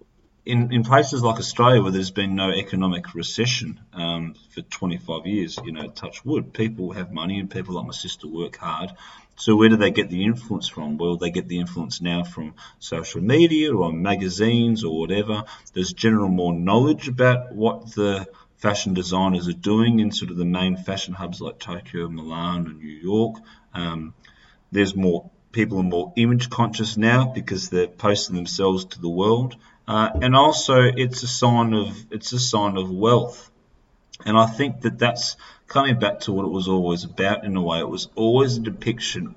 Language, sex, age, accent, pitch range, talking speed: English, male, 40-59, Australian, 90-115 Hz, 185 wpm